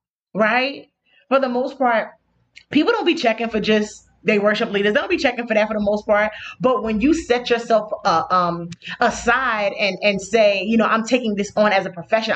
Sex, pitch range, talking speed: female, 205-275 Hz, 215 wpm